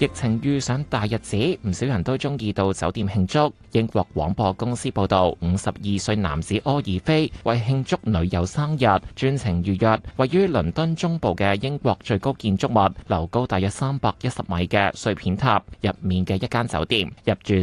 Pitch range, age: 95-125 Hz, 20-39